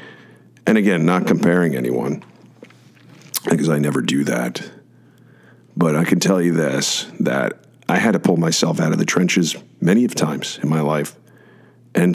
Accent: American